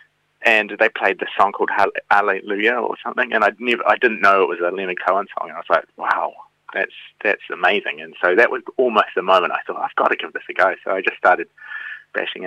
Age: 30-49